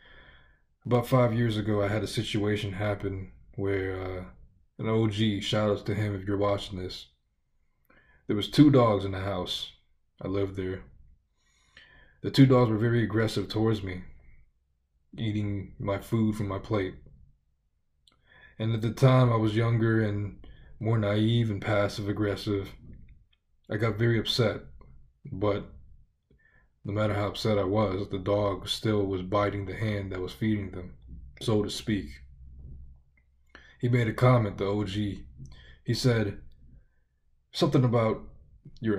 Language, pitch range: English, 90-115 Hz